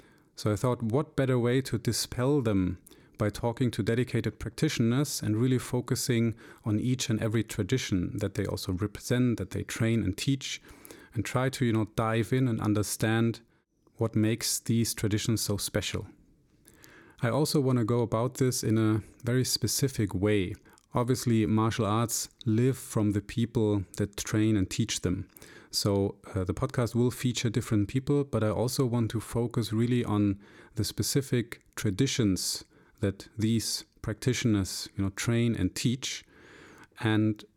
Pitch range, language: 105-125 Hz, English